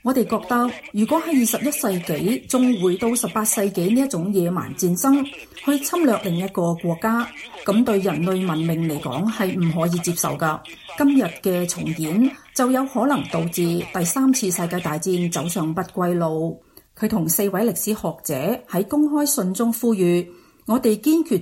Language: Chinese